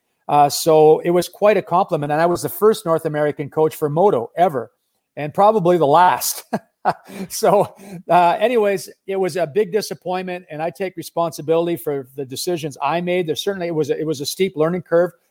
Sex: male